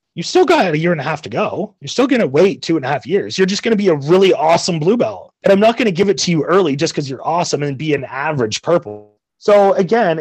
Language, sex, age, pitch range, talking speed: English, male, 30-49, 150-195 Hz, 300 wpm